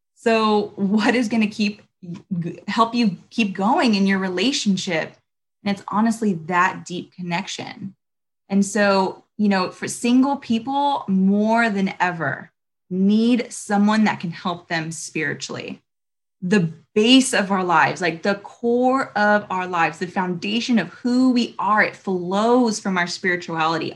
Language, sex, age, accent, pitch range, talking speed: English, female, 20-39, American, 185-230 Hz, 145 wpm